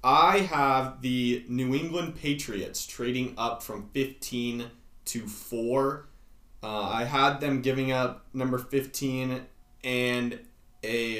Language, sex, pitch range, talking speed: English, male, 105-130 Hz, 120 wpm